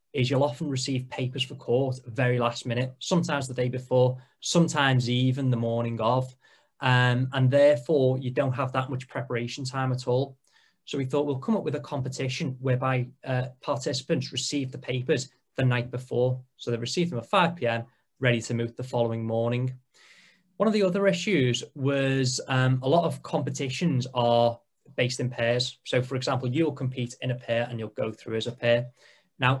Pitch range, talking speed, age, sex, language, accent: 125-140 Hz, 190 wpm, 20-39, male, English, British